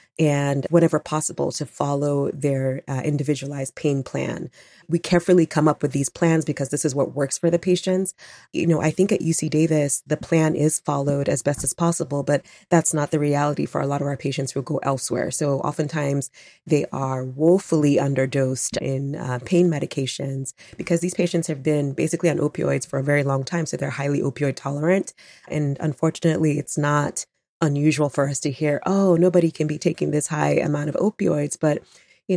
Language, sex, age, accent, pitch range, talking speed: English, female, 20-39, American, 140-165 Hz, 190 wpm